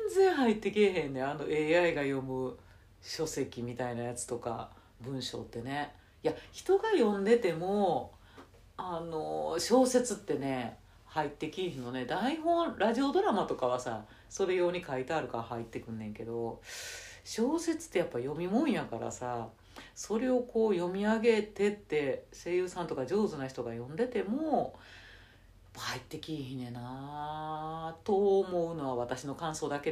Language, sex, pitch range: Japanese, female, 120-195 Hz